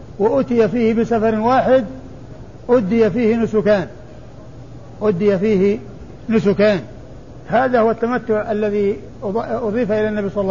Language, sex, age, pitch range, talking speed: Arabic, male, 60-79, 200-230 Hz, 110 wpm